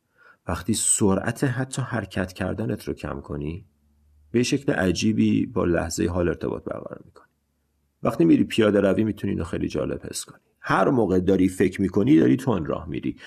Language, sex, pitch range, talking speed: Persian, male, 90-120 Hz, 165 wpm